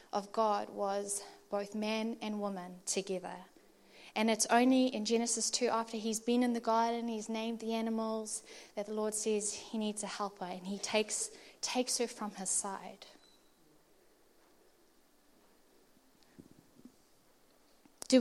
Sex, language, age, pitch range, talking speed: female, English, 20-39, 195-225 Hz, 135 wpm